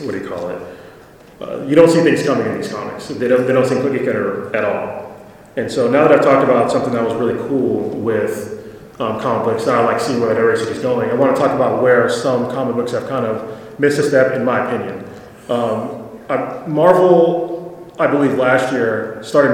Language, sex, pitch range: English, male, 130-160 Hz